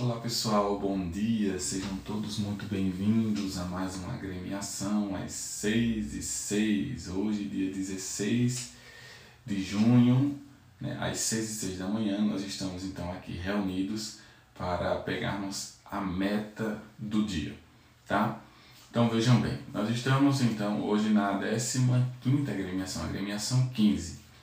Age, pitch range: 20-39, 95-120 Hz